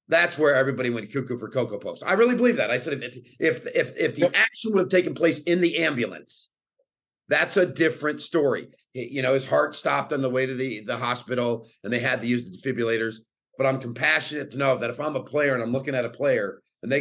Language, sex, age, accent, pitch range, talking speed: English, male, 50-69, American, 120-150 Hz, 245 wpm